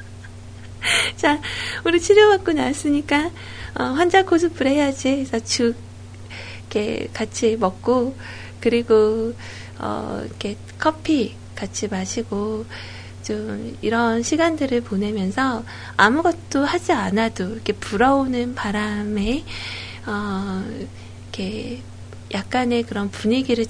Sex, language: female, Korean